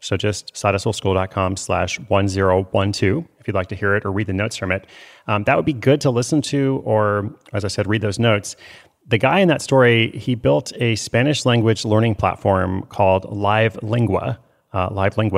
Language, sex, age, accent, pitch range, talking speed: English, male, 30-49, American, 95-120 Hz, 185 wpm